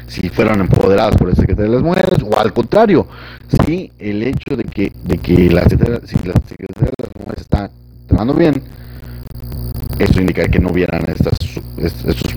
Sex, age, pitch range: male, 40-59, 80-100 Hz